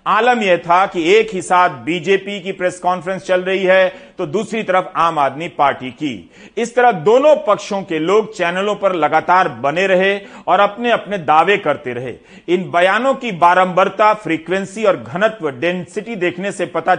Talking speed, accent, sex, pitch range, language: 175 wpm, native, male, 165-200 Hz, Hindi